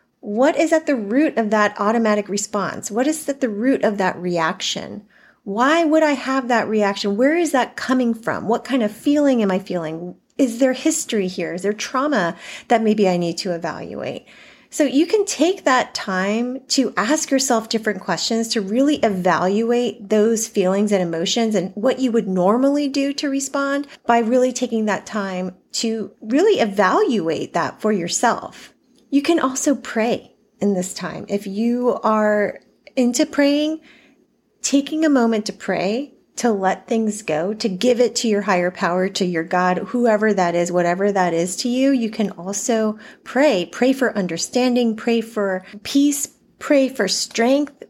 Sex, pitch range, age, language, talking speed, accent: female, 200-265 Hz, 30-49, English, 170 wpm, American